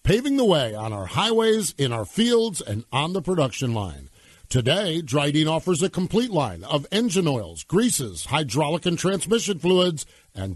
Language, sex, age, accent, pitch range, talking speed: English, male, 50-69, American, 145-195 Hz, 165 wpm